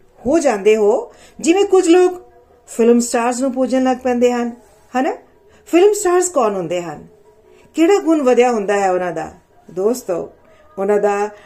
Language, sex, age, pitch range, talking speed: Punjabi, female, 40-59, 205-310 Hz, 145 wpm